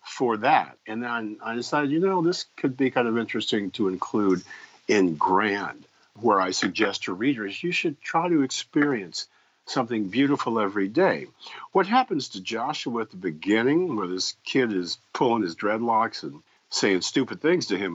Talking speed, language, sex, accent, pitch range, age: 175 wpm, English, male, American, 100-160 Hz, 50-69